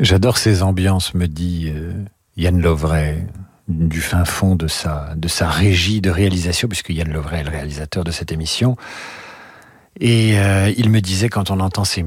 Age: 50-69